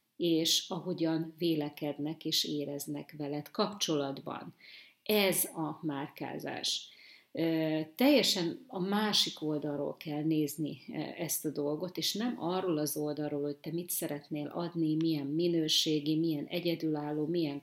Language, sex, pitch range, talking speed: Hungarian, female, 150-175 Hz, 115 wpm